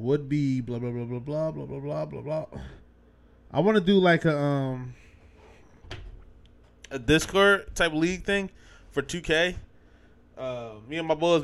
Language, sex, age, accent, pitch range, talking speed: English, male, 20-39, American, 95-140 Hz, 155 wpm